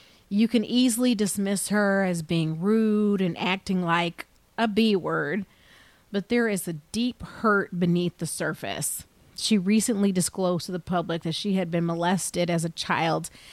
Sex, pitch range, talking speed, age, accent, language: female, 175-215 Hz, 160 wpm, 30-49, American, English